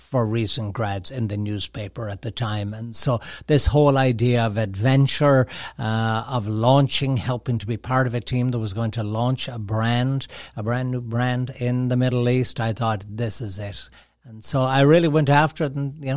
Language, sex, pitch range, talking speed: English, male, 110-125 Hz, 205 wpm